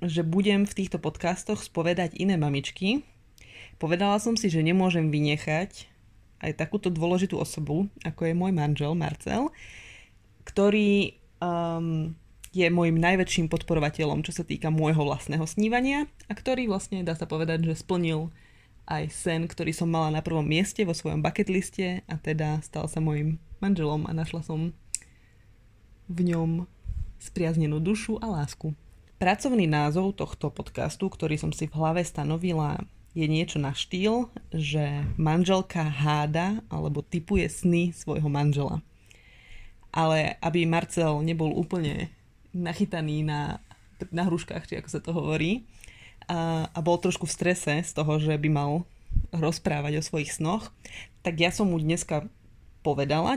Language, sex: Slovak, female